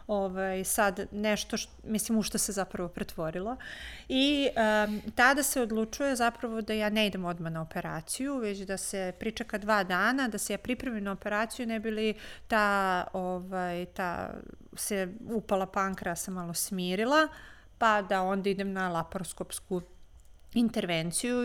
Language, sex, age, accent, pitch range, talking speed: Croatian, female, 40-59, native, 185-215 Hz, 150 wpm